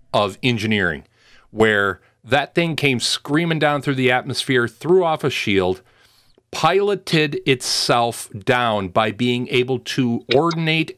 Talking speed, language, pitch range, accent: 125 wpm, English, 115-145 Hz, American